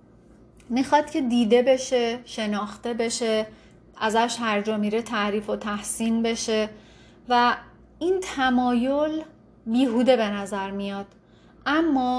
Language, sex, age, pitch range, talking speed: Persian, female, 30-49, 210-255 Hz, 110 wpm